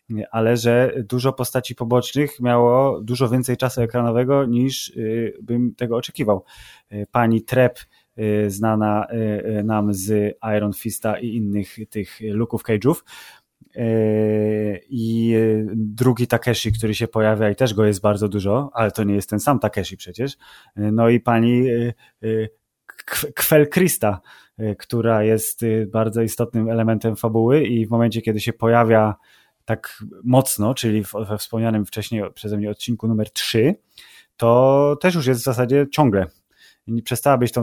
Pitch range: 110-125 Hz